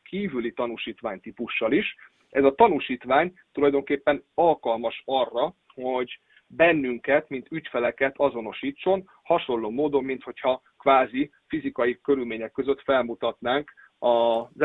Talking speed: 100 wpm